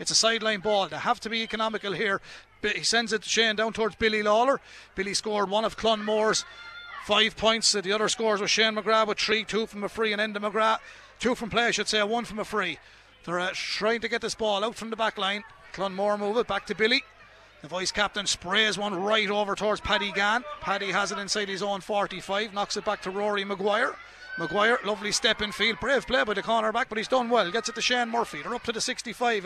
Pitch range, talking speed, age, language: 205-230 Hz, 240 wpm, 30-49, English